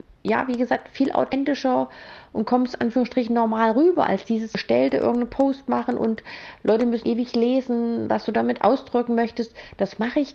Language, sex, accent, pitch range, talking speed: German, female, German, 205-240 Hz, 170 wpm